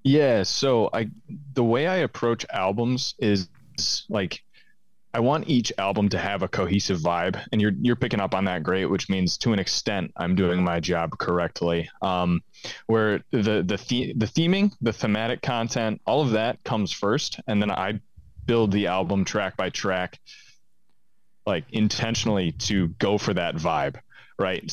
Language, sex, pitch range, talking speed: English, male, 90-110 Hz, 165 wpm